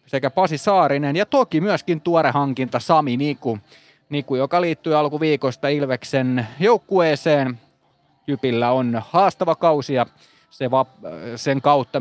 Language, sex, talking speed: Finnish, male, 125 wpm